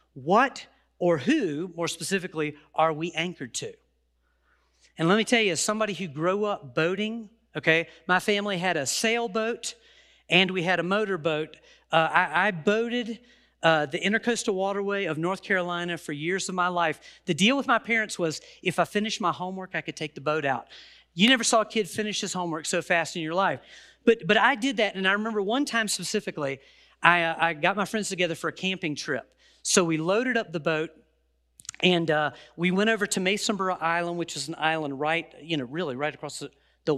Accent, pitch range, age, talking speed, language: American, 165-215 Hz, 40-59, 205 wpm, English